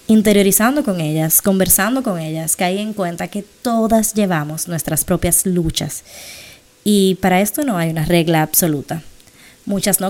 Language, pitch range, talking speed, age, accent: Spanish, 165-195 Hz, 150 wpm, 20-39, American